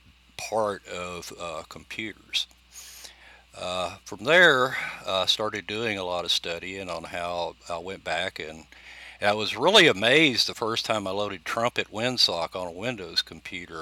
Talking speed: 155 wpm